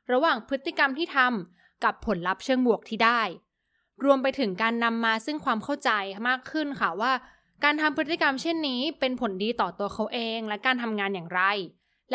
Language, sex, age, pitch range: Thai, female, 20-39, 210-275 Hz